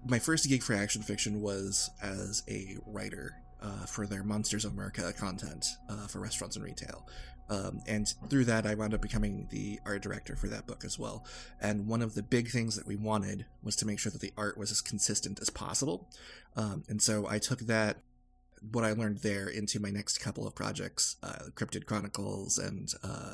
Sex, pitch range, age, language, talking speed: male, 100-110 Hz, 20-39, English, 205 wpm